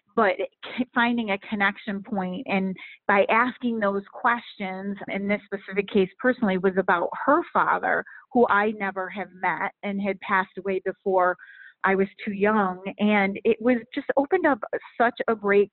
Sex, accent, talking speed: female, American, 160 wpm